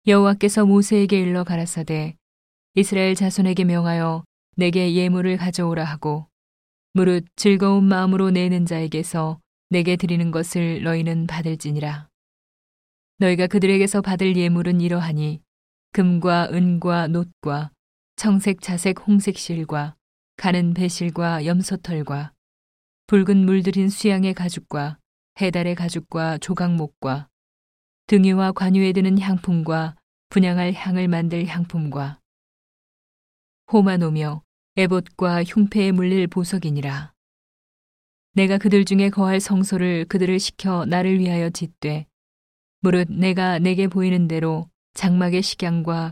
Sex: female